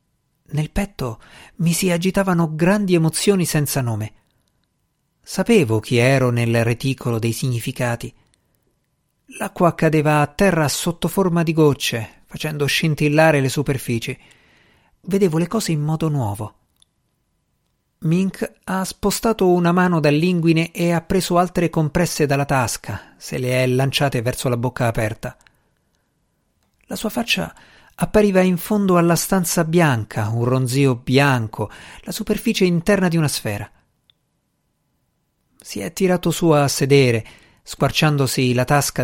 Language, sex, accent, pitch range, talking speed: Italian, male, native, 125-175 Hz, 125 wpm